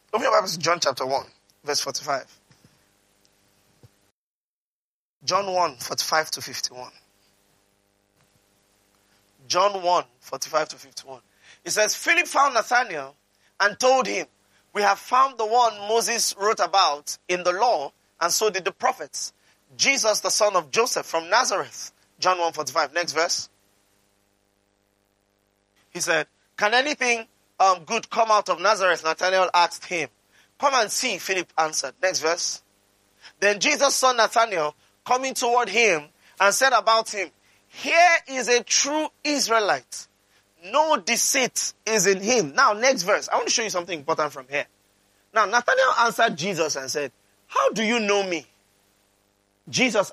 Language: English